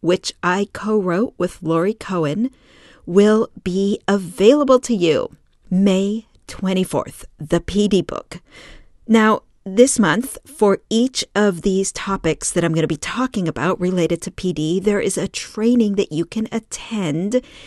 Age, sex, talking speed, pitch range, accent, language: 40-59, female, 145 wpm, 180-225 Hz, American, English